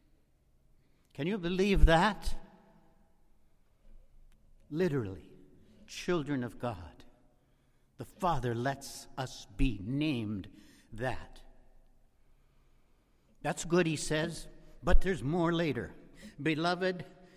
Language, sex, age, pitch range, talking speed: English, male, 60-79, 120-170 Hz, 85 wpm